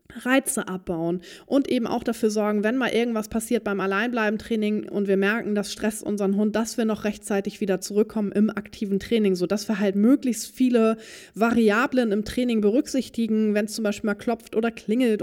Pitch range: 195-235 Hz